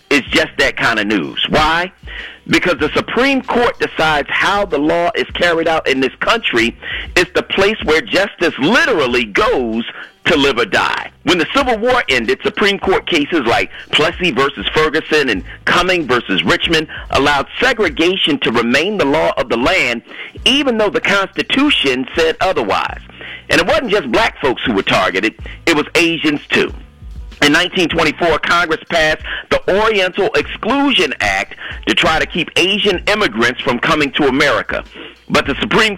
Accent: American